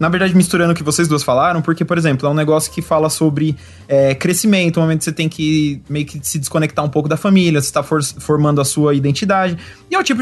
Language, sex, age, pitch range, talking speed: Portuguese, male, 20-39, 150-205 Hz, 245 wpm